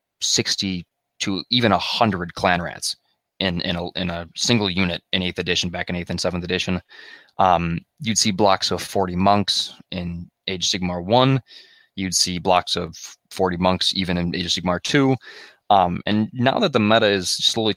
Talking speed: 170 wpm